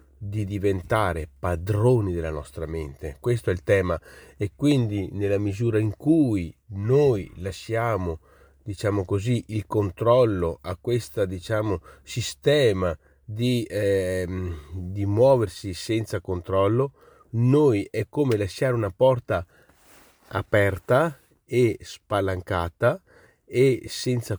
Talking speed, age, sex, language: 105 wpm, 30-49, male, Italian